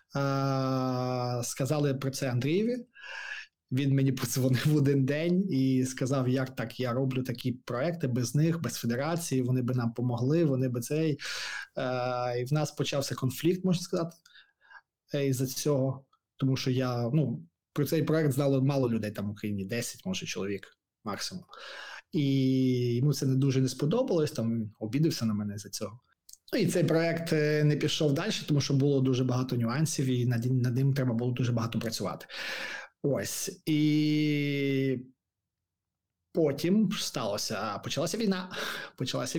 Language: Ukrainian